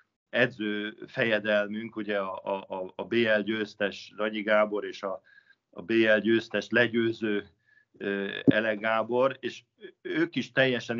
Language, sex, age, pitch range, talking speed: Hungarian, male, 50-69, 100-120 Hz, 110 wpm